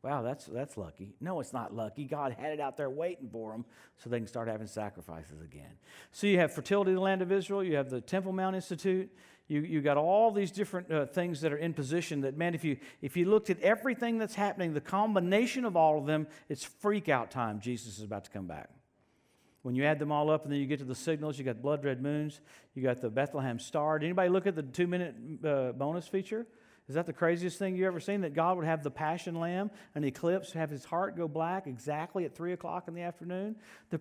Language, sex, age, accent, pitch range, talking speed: English, male, 50-69, American, 145-205 Hz, 240 wpm